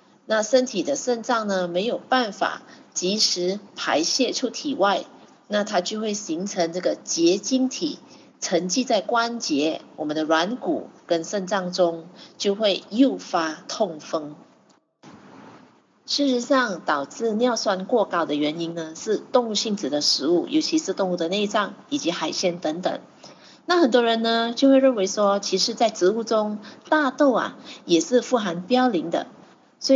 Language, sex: Chinese, female